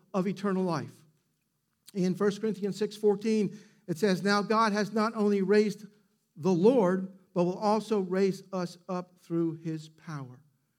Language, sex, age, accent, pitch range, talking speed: English, male, 50-69, American, 185-220 Hz, 150 wpm